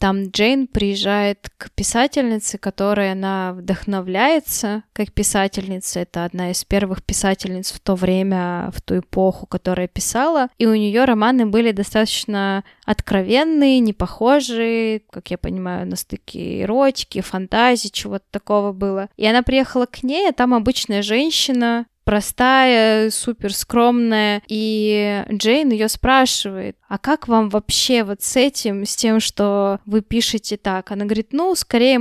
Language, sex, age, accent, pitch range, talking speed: Russian, female, 20-39, native, 200-240 Hz, 140 wpm